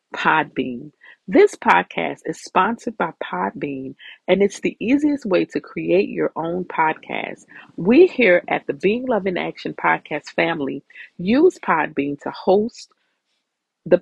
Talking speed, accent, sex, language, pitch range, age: 135 wpm, American, female, English, 170-245 Hz, 40-59